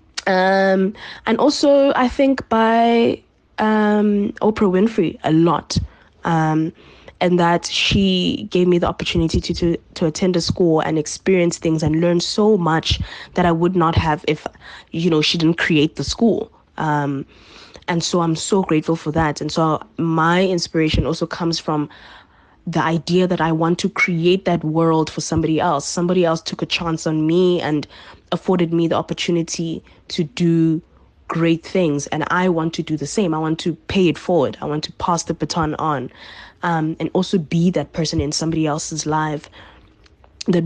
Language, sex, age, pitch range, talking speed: English, female, 20-39, 155-180 Hz, 175 wpm